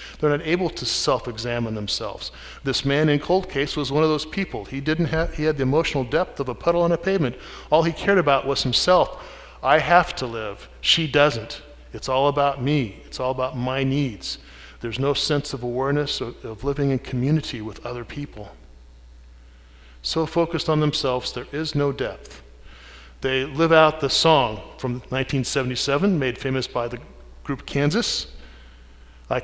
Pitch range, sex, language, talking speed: 115-155 Hz, male, English, 175 wpm